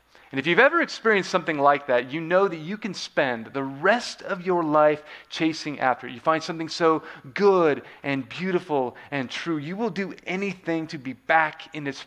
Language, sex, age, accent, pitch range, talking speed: English, male, 30-49, American, 140-185 Hz, 200 wpm